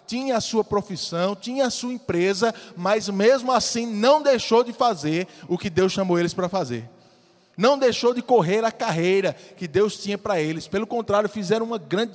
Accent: Brazilian